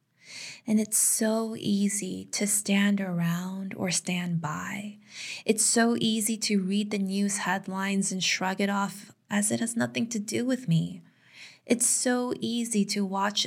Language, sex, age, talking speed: English, female, 20-39, 155 wpm